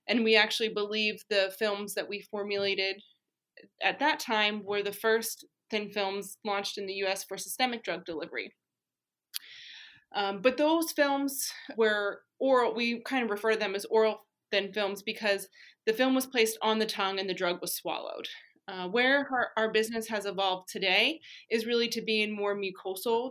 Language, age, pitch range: English, 20-39, 200-235 Hz